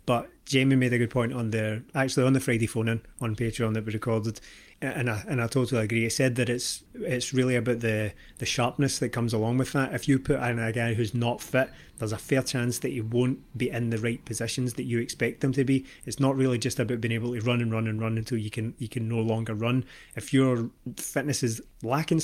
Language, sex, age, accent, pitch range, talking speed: English, male, 30-49, British, 110-130 Hz, 250 wpm